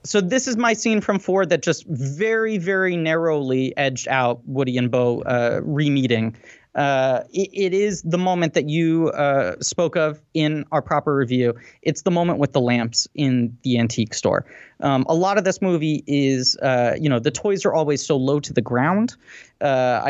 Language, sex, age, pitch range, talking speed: English, male, 30-49, 125-165 Hz, 190 wpm